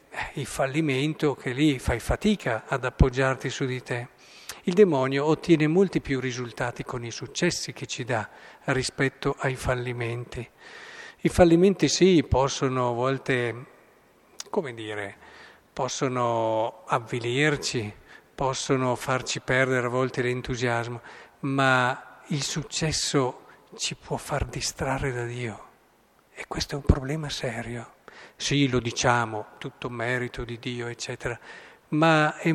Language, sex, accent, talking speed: Italian, male, native, 125 wpm